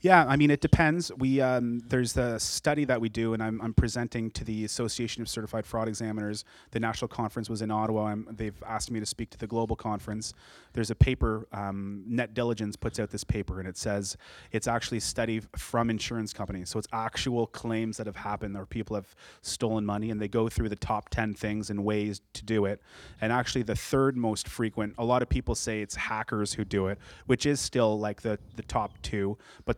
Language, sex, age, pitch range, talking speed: English, male, 30-49, 105-115 Hz, 220 wpm